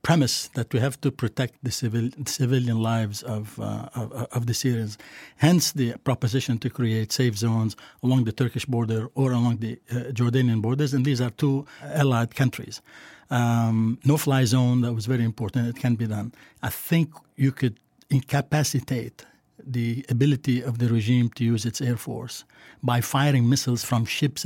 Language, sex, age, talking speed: English, male, 60-79, 170 wpm